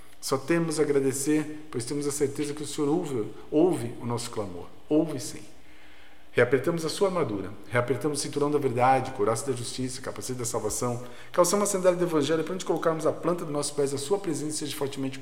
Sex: male